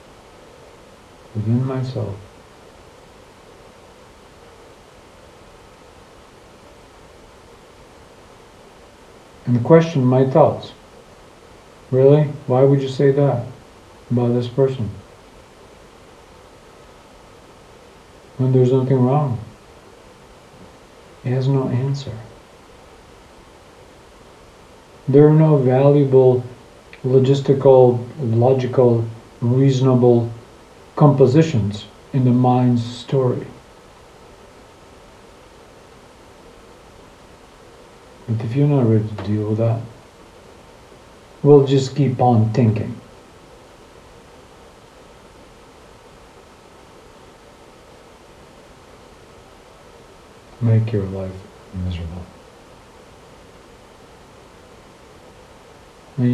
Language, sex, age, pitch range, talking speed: English, male, 50-69, 100-130 Hz, 60 wpm